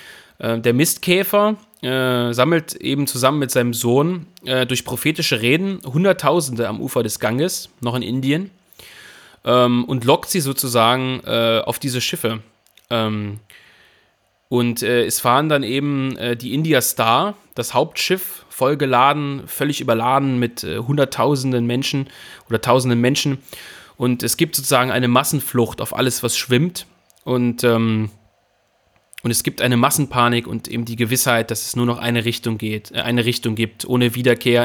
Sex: male